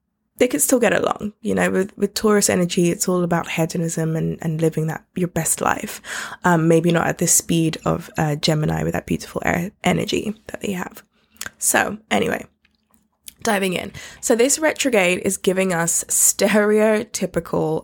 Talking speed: 170 wpm